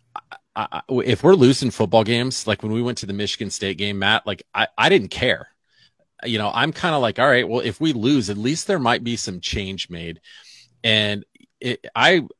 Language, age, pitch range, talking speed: English, 40-59, 95-120 Hz, 205 wpm